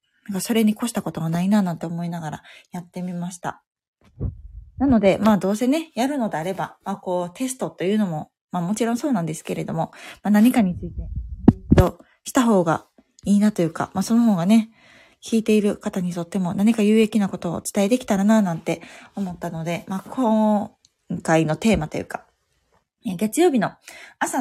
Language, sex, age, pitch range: Japanese, female, 20-39, 180-230 Hz